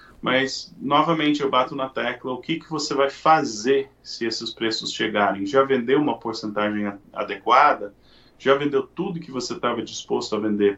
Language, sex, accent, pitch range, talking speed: Portuguese, male, Brazilian, 110-135 Hz, 165 wpm